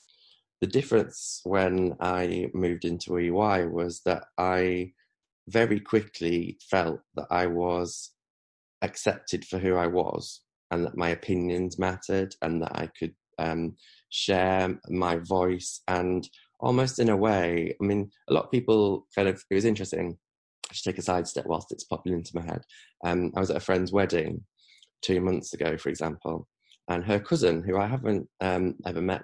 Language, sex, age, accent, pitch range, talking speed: English, male, 20-39, British, 90-110 Hz, 165 wpm